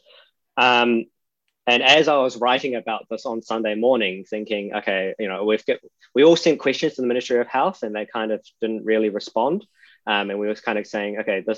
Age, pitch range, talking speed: 20-39, 100-115 Hz, 220 wpm